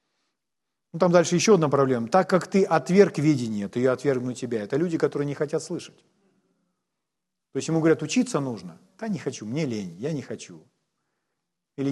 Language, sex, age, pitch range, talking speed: Ukrainian, male, 40-59, 140-205 Hz, 175 wpm